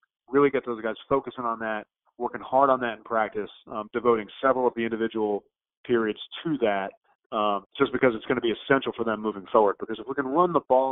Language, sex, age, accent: English, male, 30-49, American